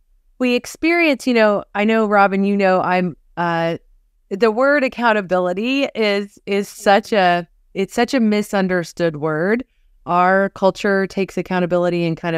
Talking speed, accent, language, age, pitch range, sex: 140 wpm, American, English, 30-49, 170-215 Hz, female